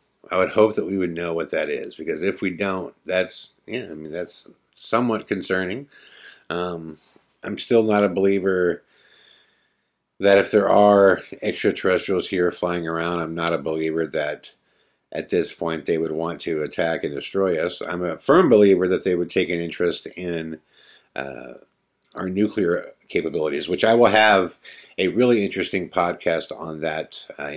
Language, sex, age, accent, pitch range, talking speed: English, male, 50-69, American, 80-105 Hz, 170 wpm